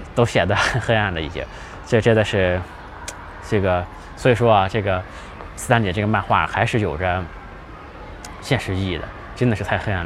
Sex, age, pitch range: male, 20-39, 90-115 Hz